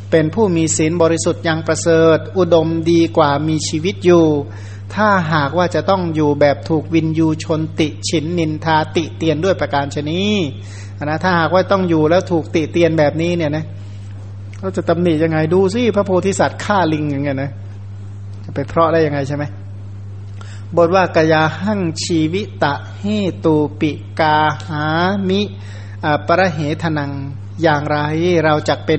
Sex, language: male, Thai